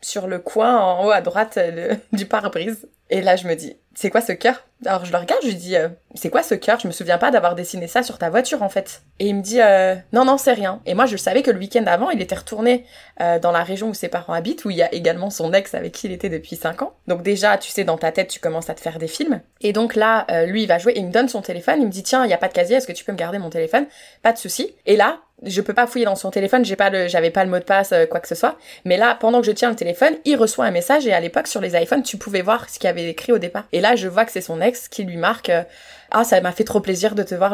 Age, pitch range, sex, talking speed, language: 20-39, 180-240 Hz, female, 320 wpm, French